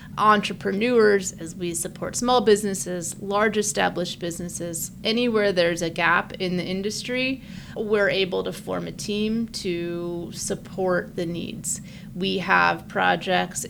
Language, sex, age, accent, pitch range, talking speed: English, female, 30-49, American, 175-200 Hz, 125 wpm